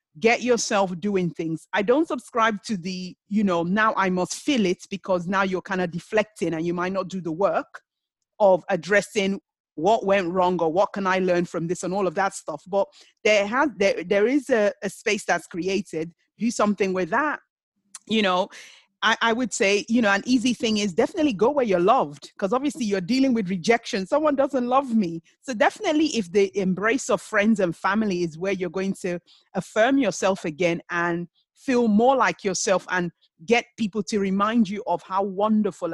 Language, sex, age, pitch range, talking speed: English, female, 30-49, 185-235 Hz, 195 wpm